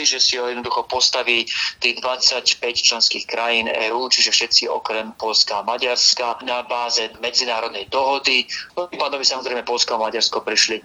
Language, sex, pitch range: Slovak, male, 115-130 Hz